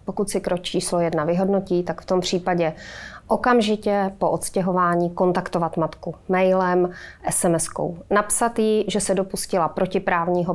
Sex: female